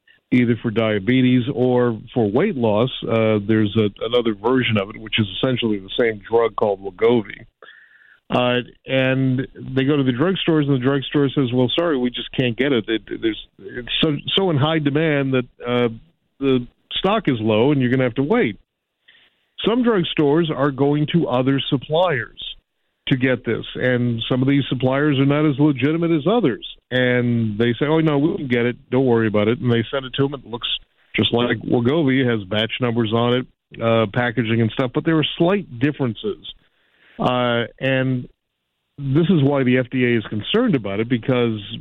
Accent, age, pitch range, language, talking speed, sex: American, 50-69, 120-145 Hz, English, 185 wpm, male